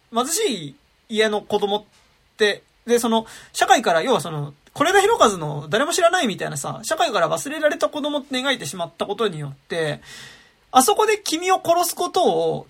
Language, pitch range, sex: Japanese, 200-320 Hz, male